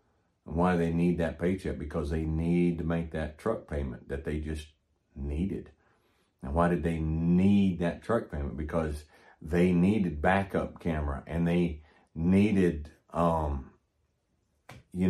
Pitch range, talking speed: 80-95 Hz, 145 wpm